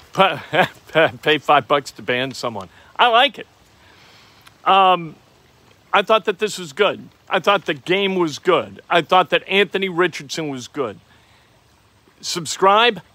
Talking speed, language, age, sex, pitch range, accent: 135 wpm, English, 50-69, male, 145-180 Hz, American